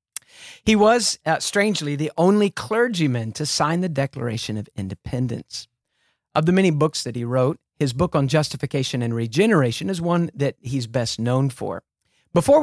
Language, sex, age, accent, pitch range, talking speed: English, male, 40-59, American, 125-170 Hz, 160 wpm